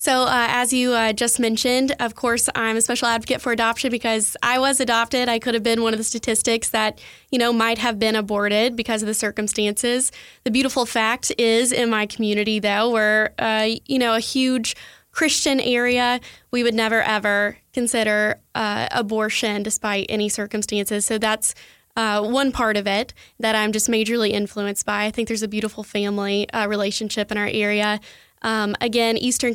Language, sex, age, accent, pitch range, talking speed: English, female, 10-29, American, 215-240 Hz, 185 wpm